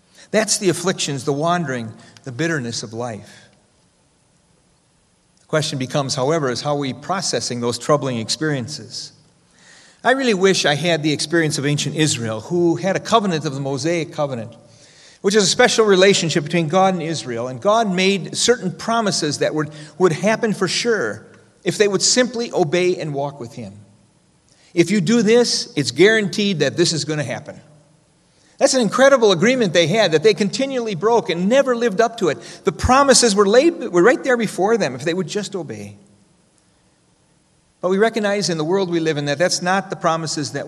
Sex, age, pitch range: male, 40-59, 145-195 Hz